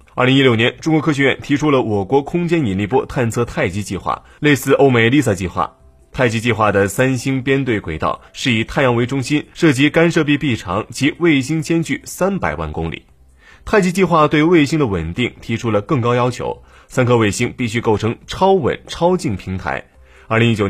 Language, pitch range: Chinese, 105-150 Hz